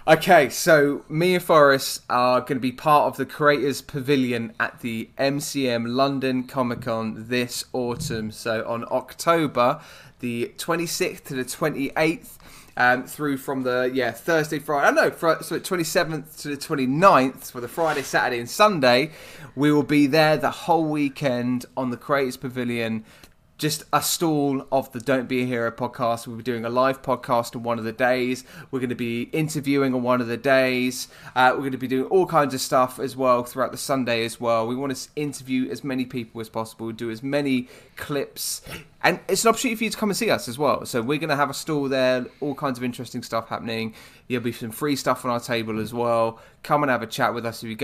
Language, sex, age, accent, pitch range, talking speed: English, male, 20-39, British, 120-145 Hz, 215 wpm